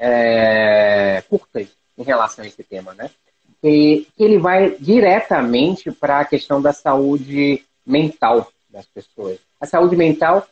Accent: Brazilian